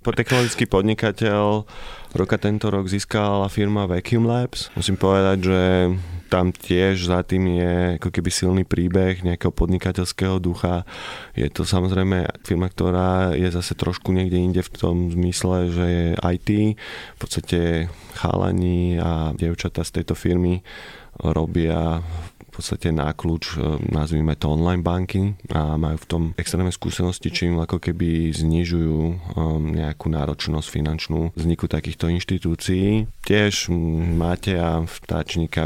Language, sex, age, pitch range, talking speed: Slovak, male, 20-39, 80-90 Hz, 125 wpm